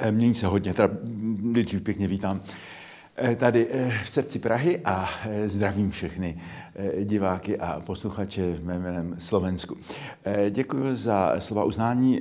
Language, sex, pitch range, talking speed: Slovak, male, 90-110 Hz, 115 wpm